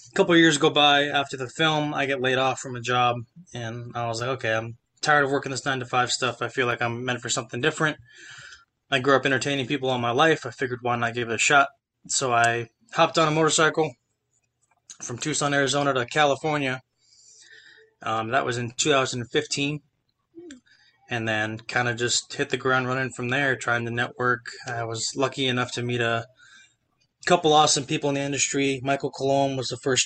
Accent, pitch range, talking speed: American, 120-145 Hz, 195 wpm